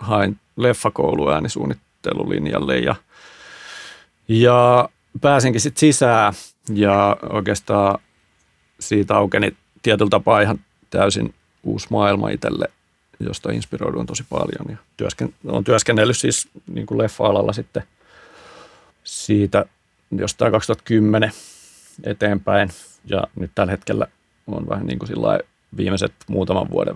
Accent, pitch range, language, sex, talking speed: native, 90-110 Hz, Finnish, male, 95 wpm